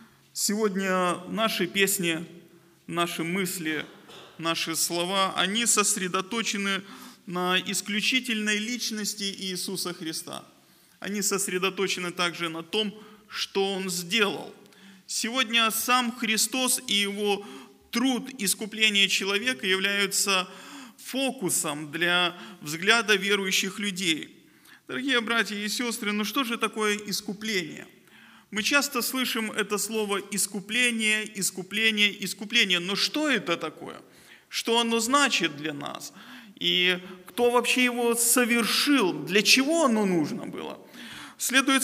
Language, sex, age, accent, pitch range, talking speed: Russian, male, 20-39, native, 185-230 Hz, 105 wpm